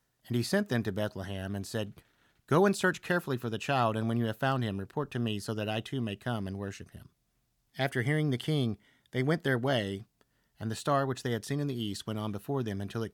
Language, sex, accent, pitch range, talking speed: English, male, American, 110-135 Hz, 260 wpm